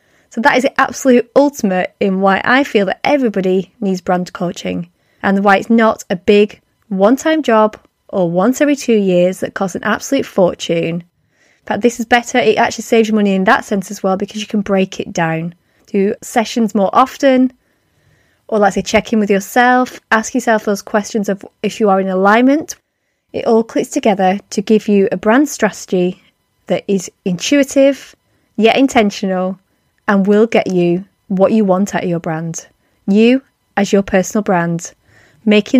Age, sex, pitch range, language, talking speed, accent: 20-39, female, 195-240 Hz, English, 180 wpm, British